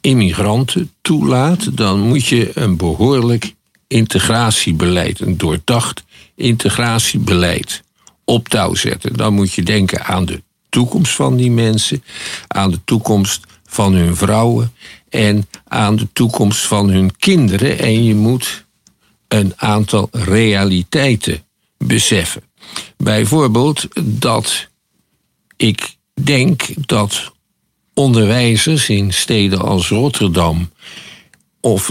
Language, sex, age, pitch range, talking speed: Dutch, male, 50-69, 100-135 Hz, 105 wpm